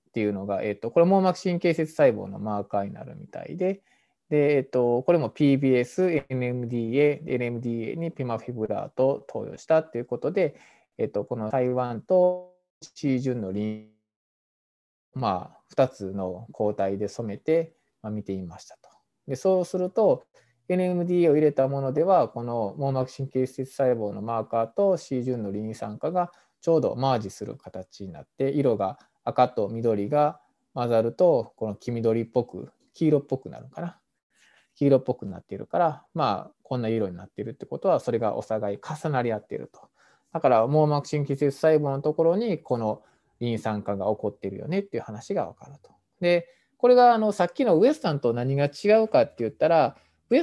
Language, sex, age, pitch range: Japanese, male, 20-39, 115-170 Hz